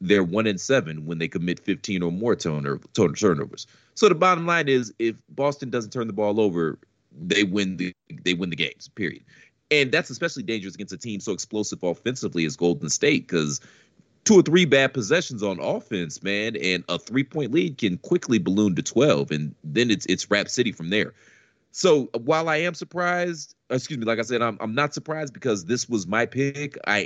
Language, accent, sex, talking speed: English, American, male, 205 wpm